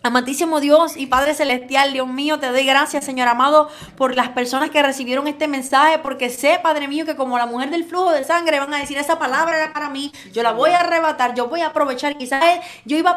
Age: 20-39